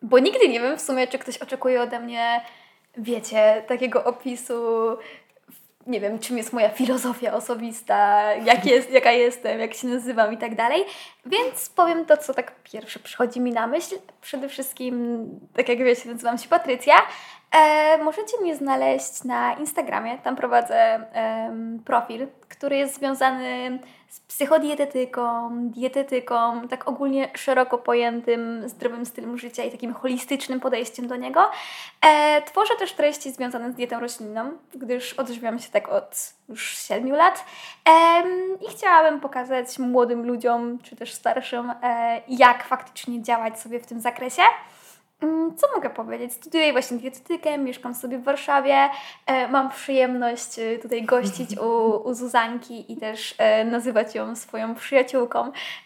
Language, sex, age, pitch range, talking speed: Polish, female, 20-39, 235-275 Hz, 140 wpm